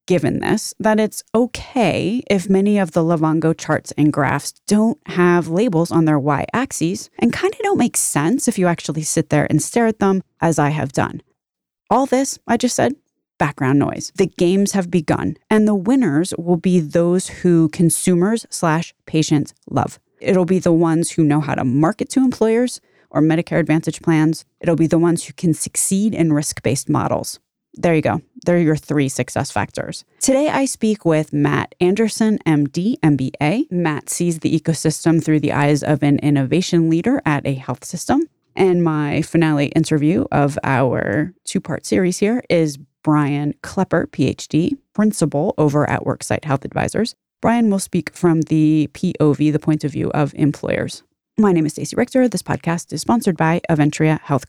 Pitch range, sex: 150-200 Hz, female